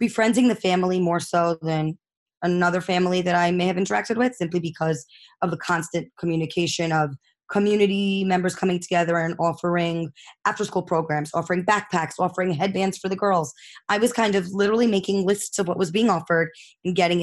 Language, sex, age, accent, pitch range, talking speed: English, female, 20-39, American, 165-200 Hz, 180 wpm